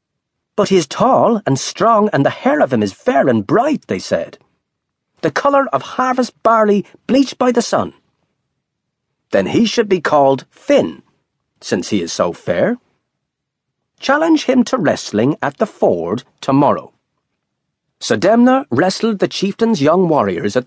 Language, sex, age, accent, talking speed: English, male, 40-59, British, 150 wpm